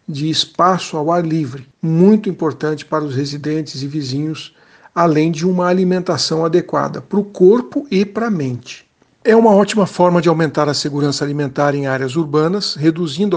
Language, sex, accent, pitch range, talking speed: Portuguese, male, Brazilian, 145-175 Hz, 165 wpm